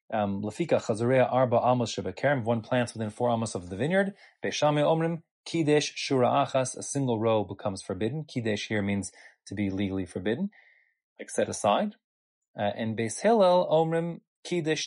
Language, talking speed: English, 155 wpm